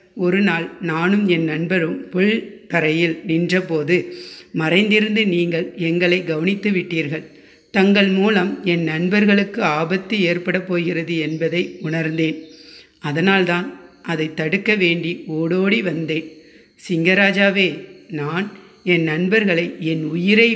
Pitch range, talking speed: 165-200 Hz, 100 wpm